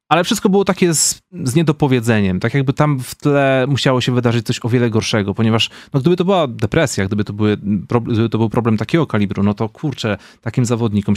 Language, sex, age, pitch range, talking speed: Polish, male, 30-49, 100-120 Hz, 215 wpm